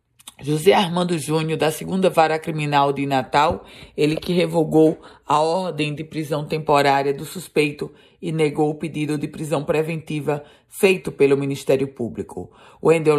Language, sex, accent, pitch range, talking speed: Portuguese, female, Brazilian, 150-185 Hz, 140 wpm